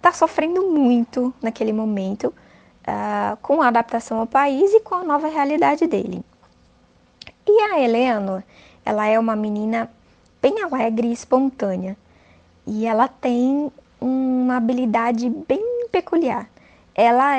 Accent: Brazilian